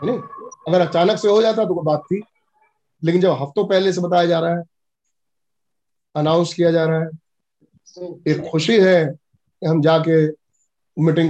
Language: Hindi